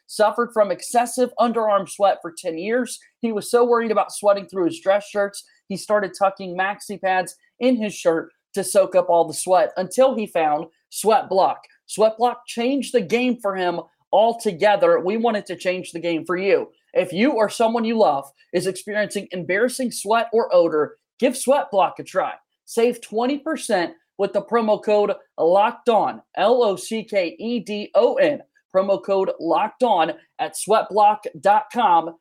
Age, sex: 30-49, male